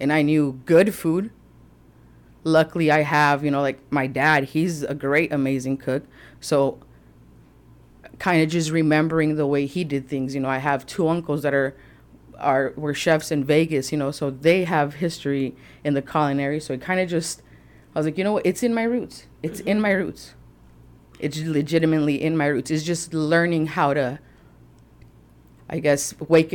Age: 30-49